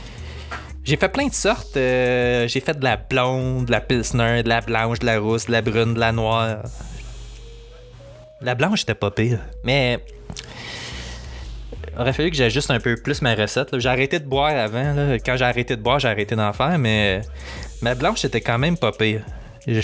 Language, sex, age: French, male, 20-39